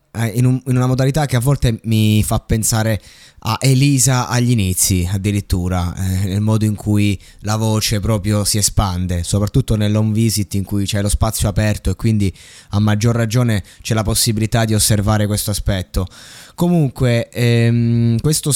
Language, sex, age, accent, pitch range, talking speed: Italian, male, 20-39, native, 105-145 Hz, 160 wpm